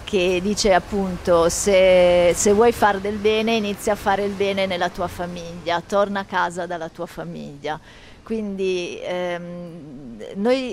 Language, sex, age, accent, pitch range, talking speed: Italian, female, 40-59, native, 180-210 Hz, 145 wpm